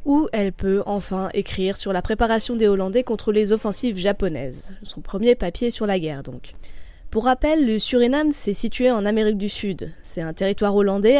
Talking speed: 190 wpm